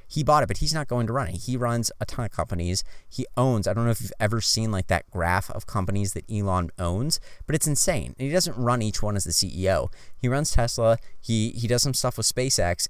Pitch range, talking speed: 95-125 Hz, 255 wpm